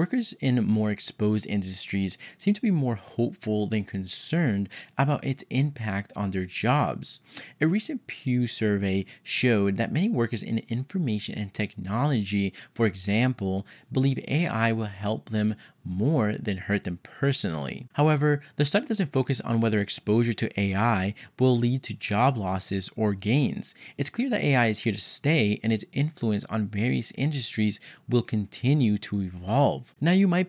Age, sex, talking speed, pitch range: 20-39, male, 155 wpm, 105-135 Hz